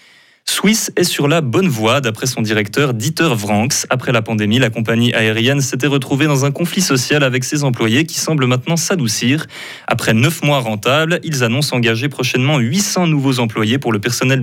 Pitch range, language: 115-140 Hz, French